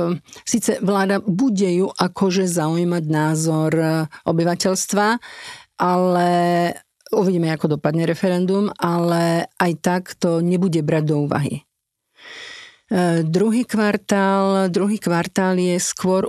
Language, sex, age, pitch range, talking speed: Slovak, female, 50-69, 165-190 Hz, 100 wpm